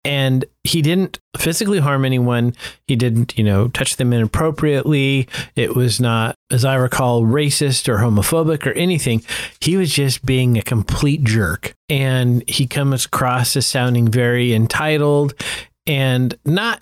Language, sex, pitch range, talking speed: English, male, 120-150 Hz, 145 wpm